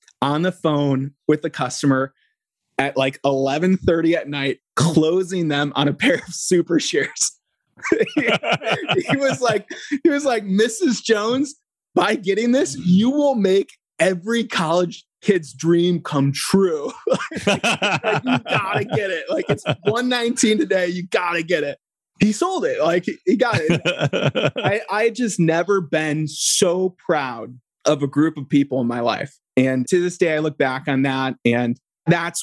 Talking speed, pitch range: 155 wpm, 135-180 Hz